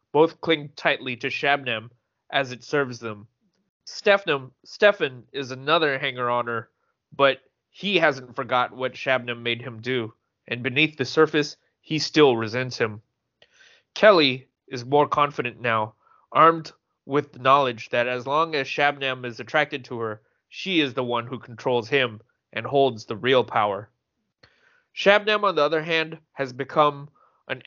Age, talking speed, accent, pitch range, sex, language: 20-39, 150 wpm, American, 125-155 Hz, male, English